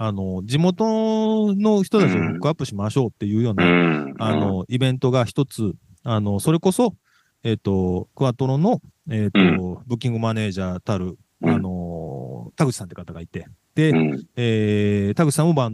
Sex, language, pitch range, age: male, Japanese, 100-155 Hz, 40-59